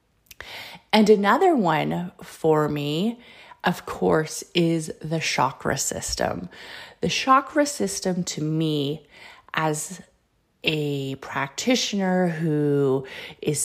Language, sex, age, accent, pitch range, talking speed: English, female, 30-49, American, 155-200 Hz, 90 wpm